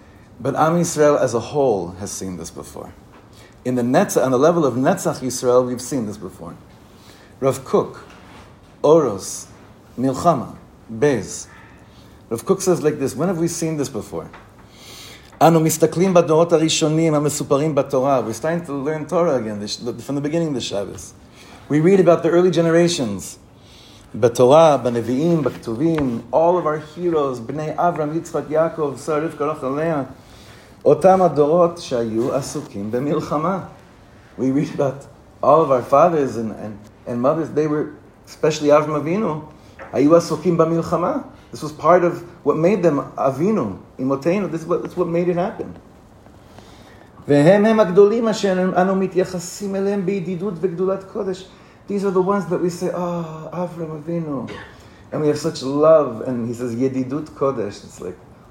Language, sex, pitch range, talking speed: English, male, 120-170 Hz, 135 wpm